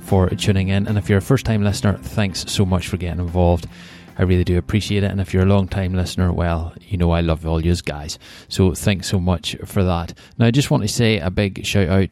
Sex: male